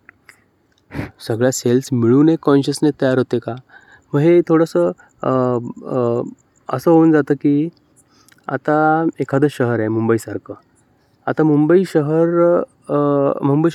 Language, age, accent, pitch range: Marathi, 20-39, native, 115-145 Hz